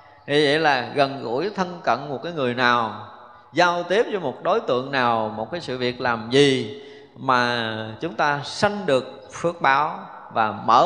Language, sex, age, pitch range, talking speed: Vietnamese, male, 20-39, 120-160 Hz, 180 wpm